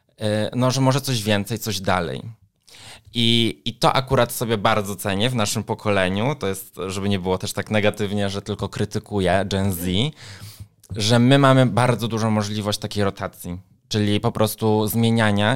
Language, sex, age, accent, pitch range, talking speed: Polish, male, 20-39, native, 100-120 Hz, 160 wpm